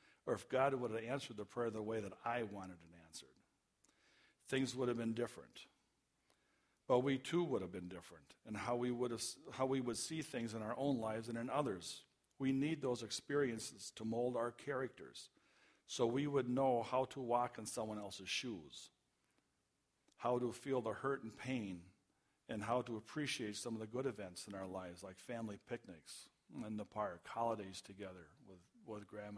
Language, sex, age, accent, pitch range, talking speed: English, male, 50-69, American, 105-125 Hz, 190 wpm